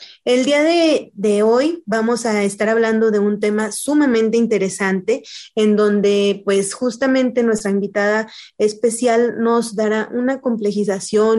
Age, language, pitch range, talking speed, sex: 20-39, Spanish, 205-245 Hz, 130 wpm, female